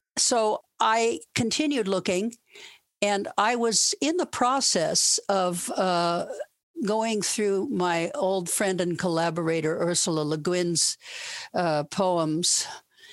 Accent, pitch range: American, 170-215 Hz